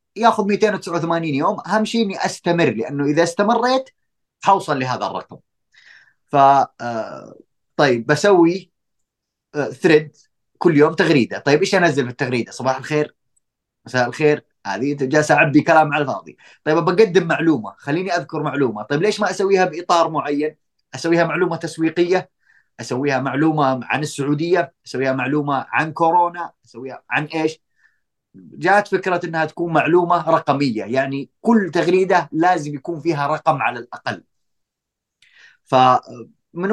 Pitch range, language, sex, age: 140-175 Hz, Arabic, male, 30-49